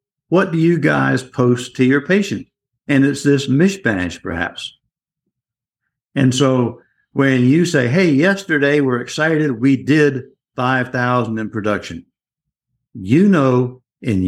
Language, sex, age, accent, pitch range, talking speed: English, male, 60-79, American, 115-140 Hz, 130 wpm